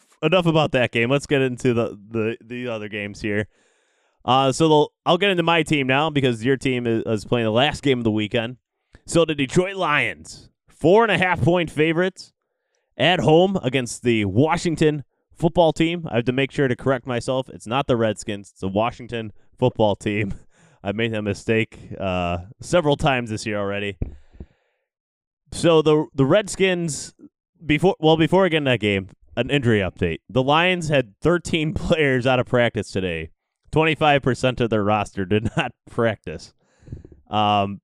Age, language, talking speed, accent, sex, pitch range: 20-39, English, 170 wpm, American, male, 105-145 Hz